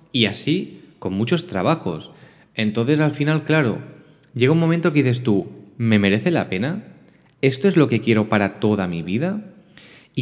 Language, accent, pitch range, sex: Spanish, Spanish, 110-145 Hz, male